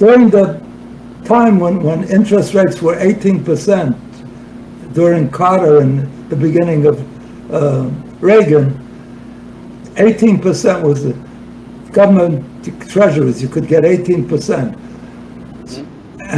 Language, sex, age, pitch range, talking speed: English, male, 60-79, 145-195 Hz, 95 wpm